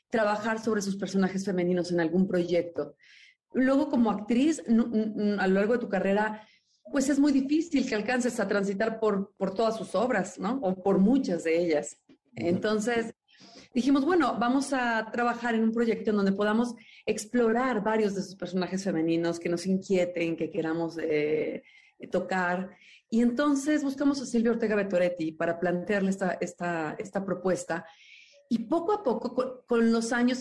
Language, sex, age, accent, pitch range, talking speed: Spanish, female, 30-49, Mexican, 180-240 Hz, 160 wpm